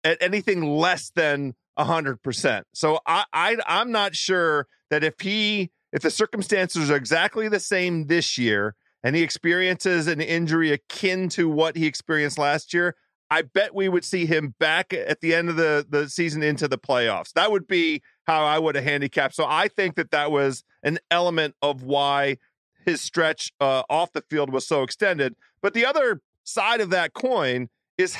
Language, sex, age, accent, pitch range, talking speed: English, male, 40-59, American, 150-205 Hz, 190 wpm